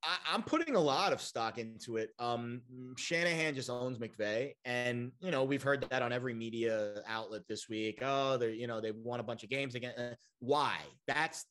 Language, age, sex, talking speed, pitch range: English, 30-49, male, 200 wpm, 110-145 Hz